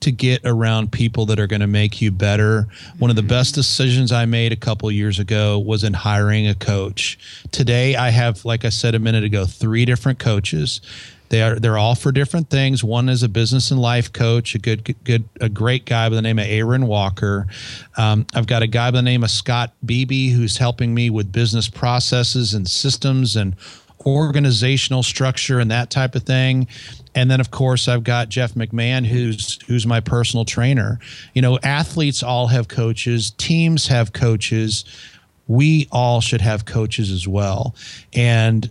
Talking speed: 190 wpm